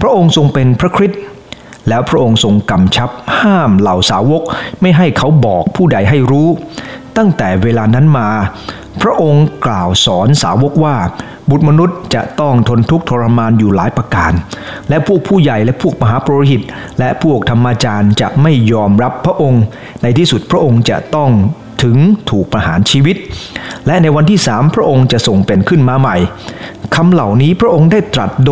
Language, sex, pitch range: English, male, 115-155 Hz